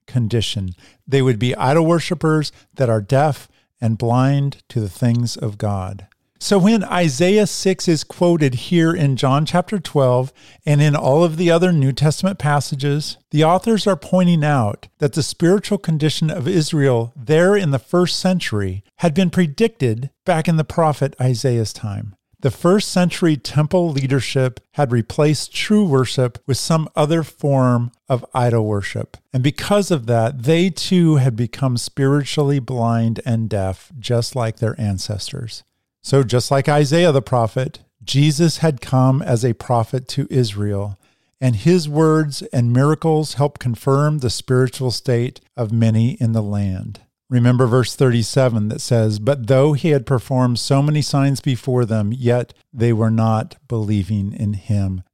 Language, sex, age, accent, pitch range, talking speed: English, male, 50-69, American, 120-155 Hz, 155 wpm